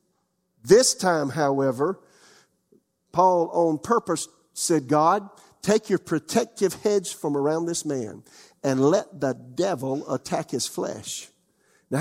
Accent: American